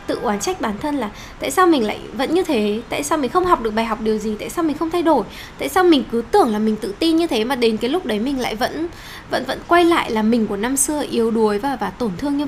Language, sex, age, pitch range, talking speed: Vietnamese, female, 10-29, 220-315 Hz, 310 wpm